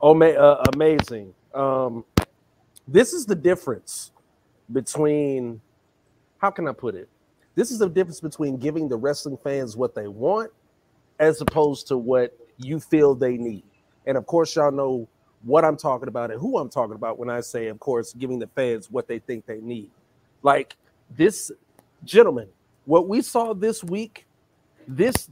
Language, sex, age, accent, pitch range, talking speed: English, male, 40-59, American, 130-175 Hz, 165 wpm